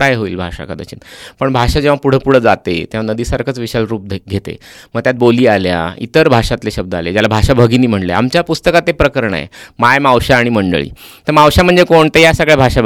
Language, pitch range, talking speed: Marathi, 110-155 Hz, 155 wpm